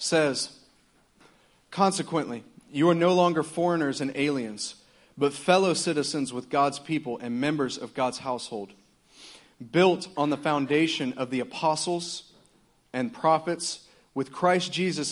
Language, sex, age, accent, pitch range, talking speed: English, male, 40-59, American, 135-175 Hz, 125 wpm